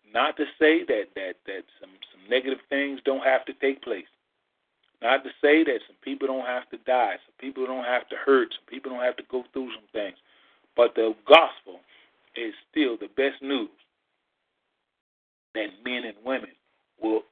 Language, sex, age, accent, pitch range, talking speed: English, male, 40-59, American, 125-210 Hz, 185 wpm